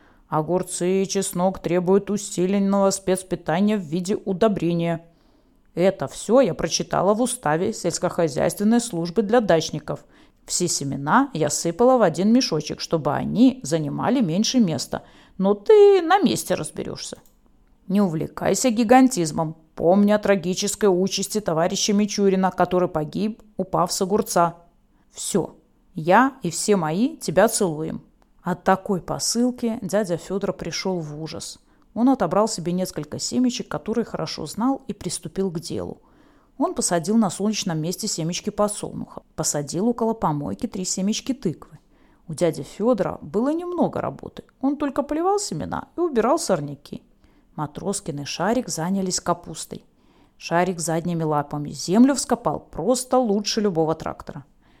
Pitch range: 170-225 Hz